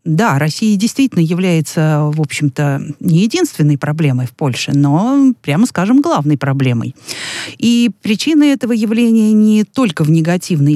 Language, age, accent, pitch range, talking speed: Russian, 50-69, native, 155-225 Hz, 135 wpm